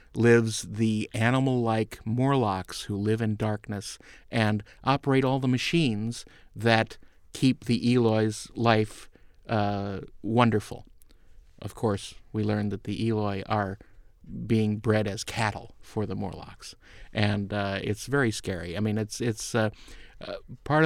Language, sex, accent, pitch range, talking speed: English, male, American, 105-125 Hz, 135 wpm